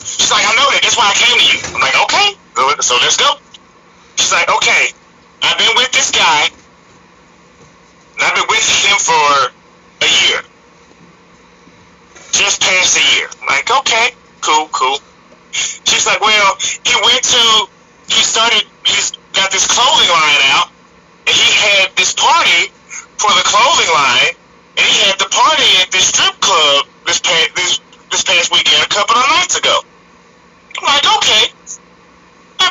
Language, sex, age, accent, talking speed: English, male, 40-59, American, 160 wpm